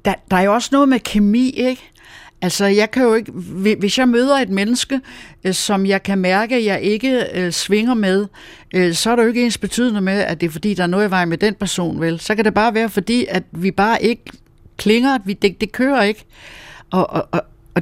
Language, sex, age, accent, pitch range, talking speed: Danish, female, 60-79, native, 180-235 Hz, 240 wpm